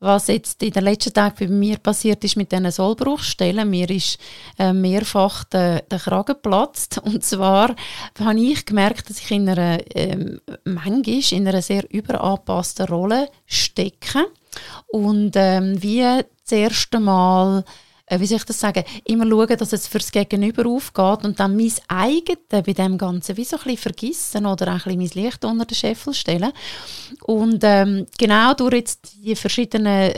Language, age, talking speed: German, 30-49, 165 wpm